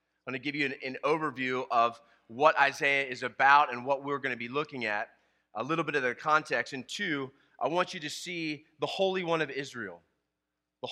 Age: 30-49